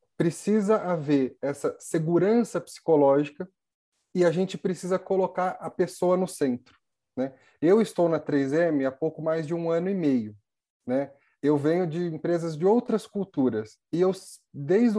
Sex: male